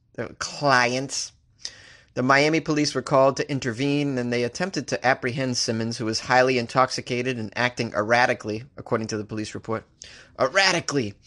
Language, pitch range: English, 120-155 Hz